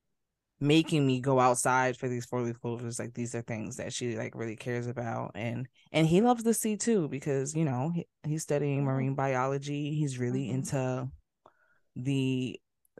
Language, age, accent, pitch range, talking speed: English, 20-39, American, 125-155 Hz, 170 wpm